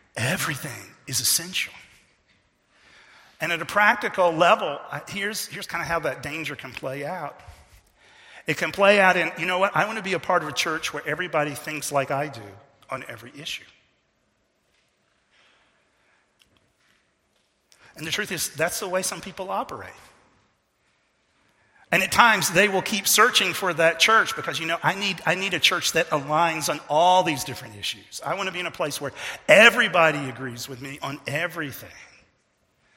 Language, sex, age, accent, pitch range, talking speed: English, male, 40-59, American, 145-190 Hz, 170 wpm